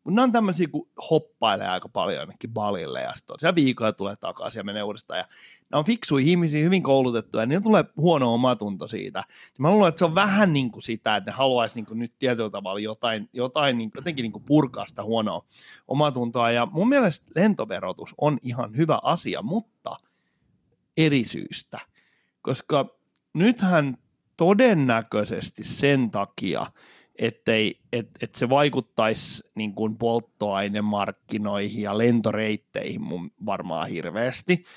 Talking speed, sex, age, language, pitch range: 140 wpm, male, 30-49, Finnish, 115-175 Hz